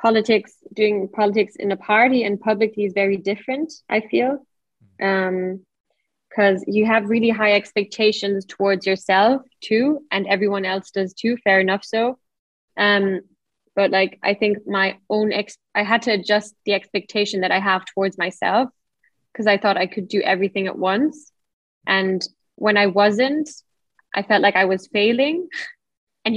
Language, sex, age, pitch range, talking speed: English, female, 10-29, 195-220 Hz, 155 wpm